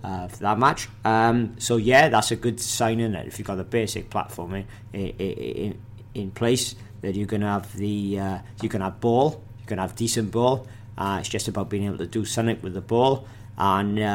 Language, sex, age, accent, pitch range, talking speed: English, male, 40-59, British, 100-115 Hz, 220 wpm